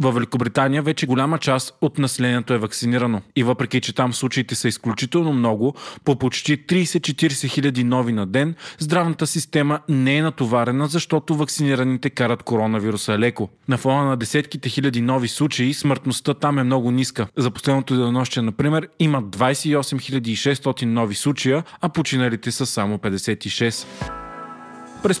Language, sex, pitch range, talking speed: Bulgarian, male, 120-150 Hz, 145 wpm